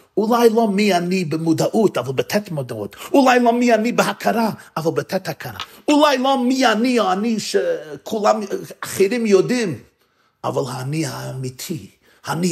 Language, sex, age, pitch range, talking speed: Hebrew, male, 50-69, 145-220 Hz, 140 wpm